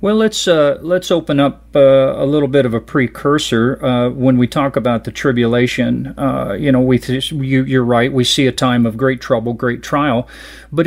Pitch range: 115-135 Hz